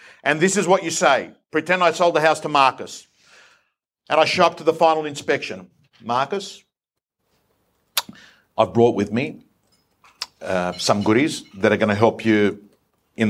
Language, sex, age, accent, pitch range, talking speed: English, male, 50-69, Australian, 100-125 Hz, 160 wpm